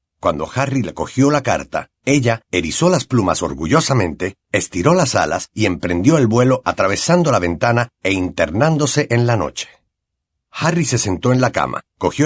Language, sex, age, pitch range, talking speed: Spanish, male, 50-69, 115-150 Hz, 160 wpm